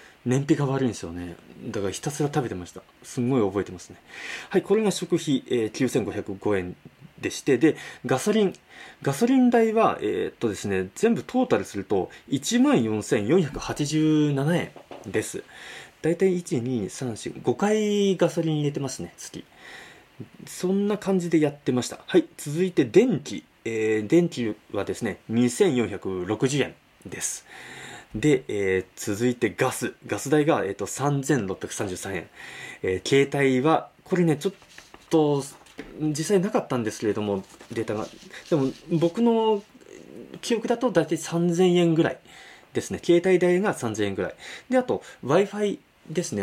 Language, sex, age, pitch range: Japanese, male, 20-39, 115-185 Hz